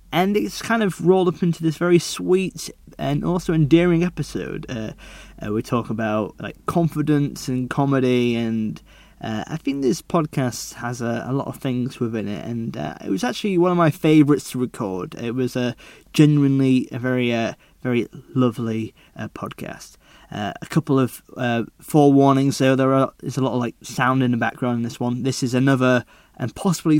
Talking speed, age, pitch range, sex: 190 wpm, 20-39, 120-150 Hz, male